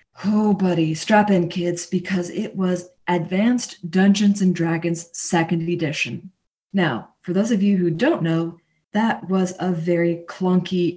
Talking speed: 140 wpm